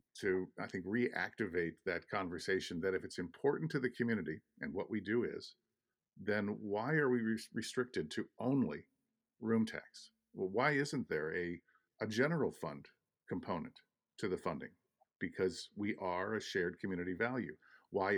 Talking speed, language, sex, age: 160 wpm, English, male, 50-69